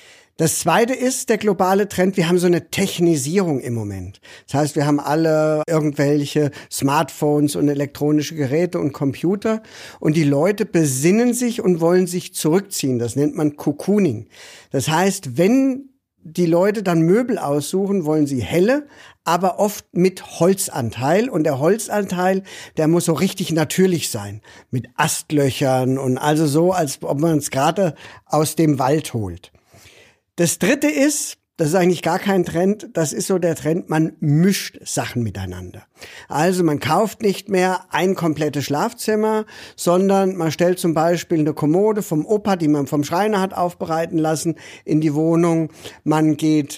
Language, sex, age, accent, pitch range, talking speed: German, male, 50-69, German, 150-190 Hz, 160 wpm